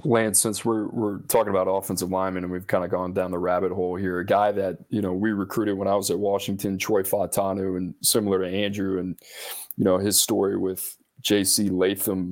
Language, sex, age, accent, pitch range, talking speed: English, male, 20-39, American, 95-110 Hz, 215 wpm